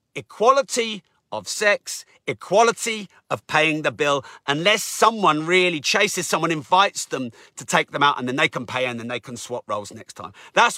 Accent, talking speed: British, 185 wpm